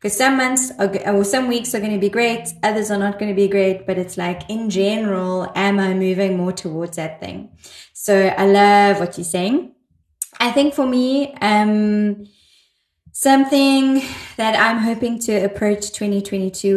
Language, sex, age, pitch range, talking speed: English, female, 20-39, 185-210 Hz, 175 wpm